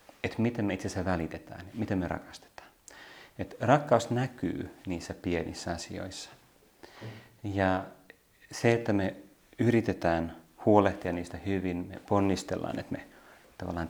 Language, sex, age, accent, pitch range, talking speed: Finnish, male, 30-49, native, 90-105 Hz, 120 wpm